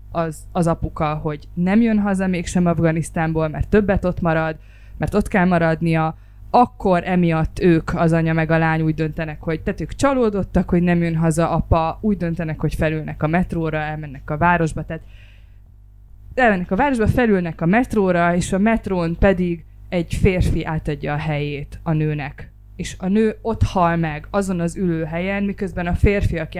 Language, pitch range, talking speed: Hungarian, 150-200 Hz, 170 wpm